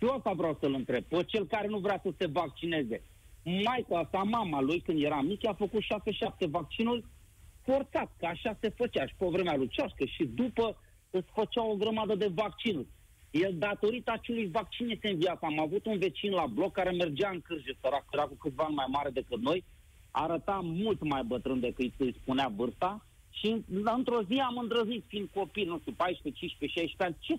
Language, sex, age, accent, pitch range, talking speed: Romanian, male, 40-59, native, 155-220 Hz, 195 wpm